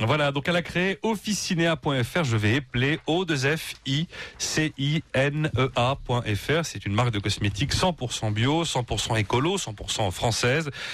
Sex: male